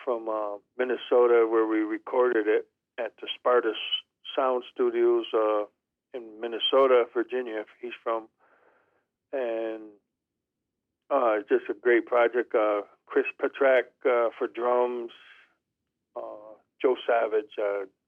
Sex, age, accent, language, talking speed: male, 50-69, American, English, 120 wpm